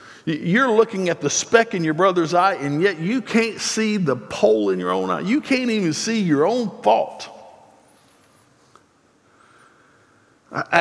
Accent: American